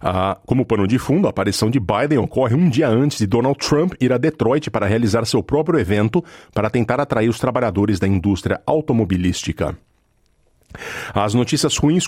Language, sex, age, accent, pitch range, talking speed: Portuguese, male, 40-59, Brazilian, 105-135 Hz, 175 wpm